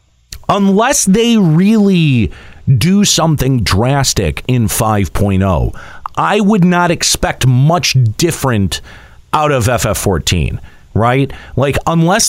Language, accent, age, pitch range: English, American, 40-59, 120-185 Hz